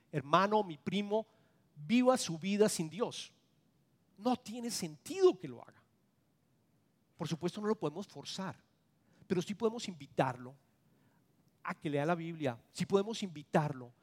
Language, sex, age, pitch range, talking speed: English, male, 40-59, 140-185 Hz, 135 wpm